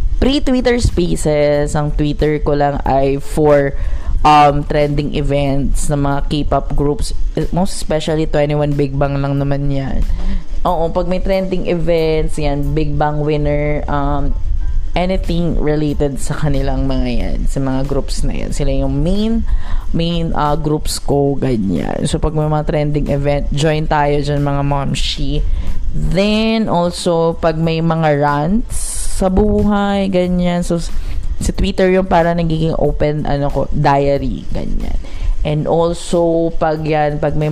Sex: female